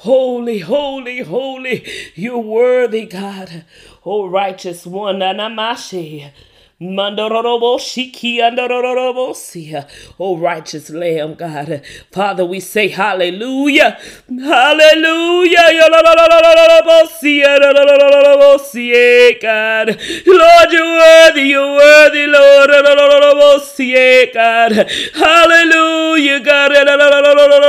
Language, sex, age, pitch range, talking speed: English, male, 40-59, 250-330 Hz, 75 wpm